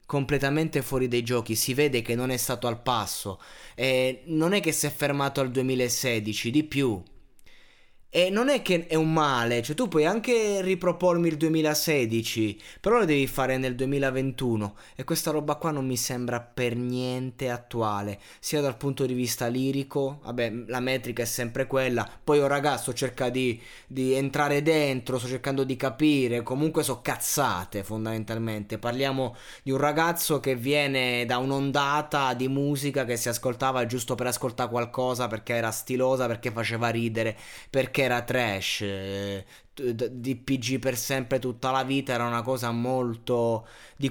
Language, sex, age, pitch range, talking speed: Italian, male, 20-39, 120-145 Hz, 165 wpm